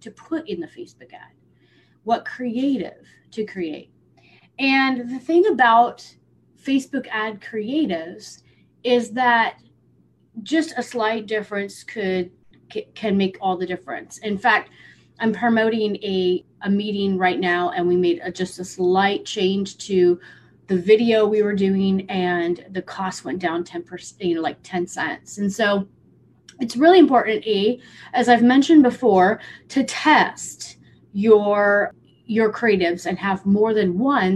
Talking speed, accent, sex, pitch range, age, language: 145 wpm, American, female, 185-240 Hz, 30-49, English